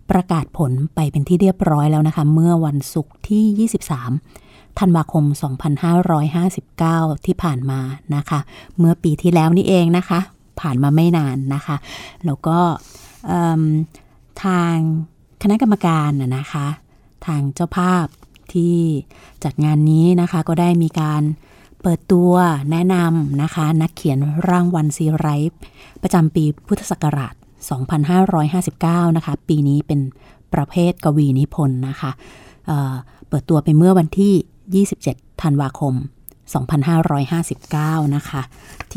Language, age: Thai, 30-49